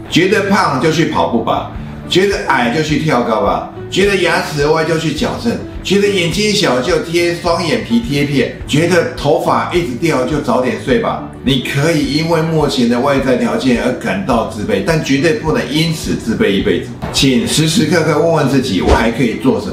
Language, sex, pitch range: Chinese, male, 125-175 Hz